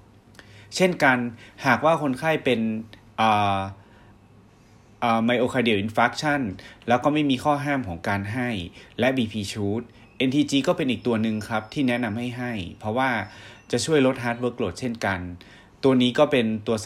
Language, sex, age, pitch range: Thai, male, 30-49, 100-125 Hz